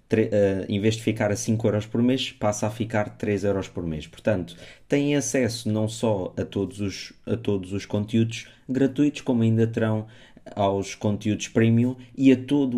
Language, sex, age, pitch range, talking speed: Portuguese, male, 20-39, 100-115 Hz, 160 wpm